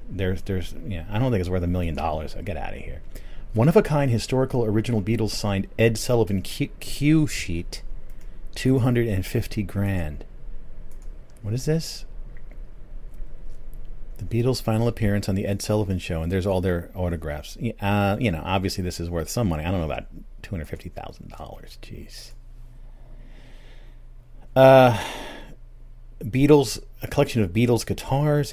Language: English